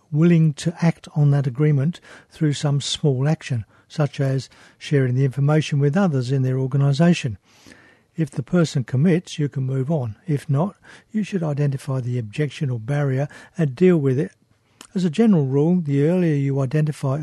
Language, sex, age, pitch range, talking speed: English, male, 60-79, 130-160 Hz, 170 wpm